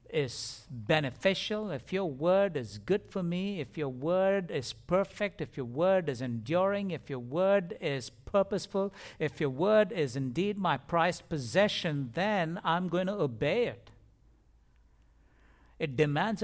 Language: English